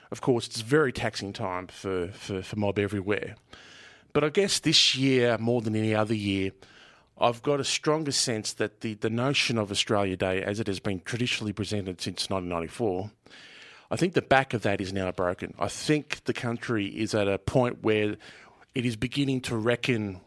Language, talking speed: English, 190 wpm